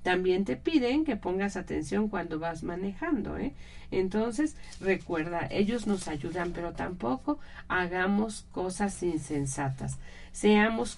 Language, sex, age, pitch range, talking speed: Spanish, female, 40-59, 175-245 Hz, 110 wpm